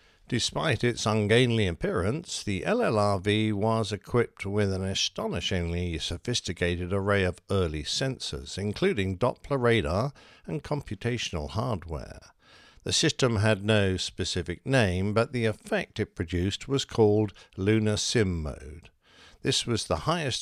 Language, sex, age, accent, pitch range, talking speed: English, male, 50-69, British, 95-125 Hz, 125 wpm